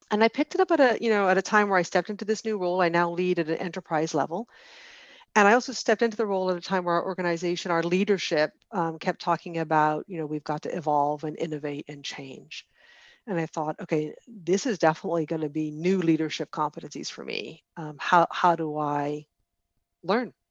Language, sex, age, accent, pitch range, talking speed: English, female, 40-59, American, 160-210 Hz, 220 wpm